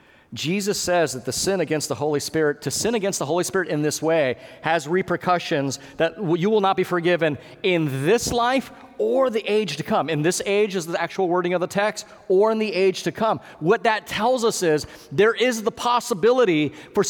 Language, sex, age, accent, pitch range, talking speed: English, male, 30-49, American, 150-210 Hz, 210 wpm